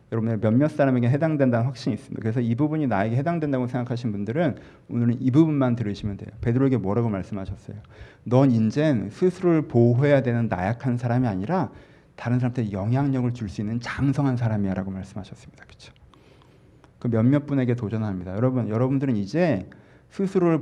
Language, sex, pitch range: Korean, male, 120-150 Hz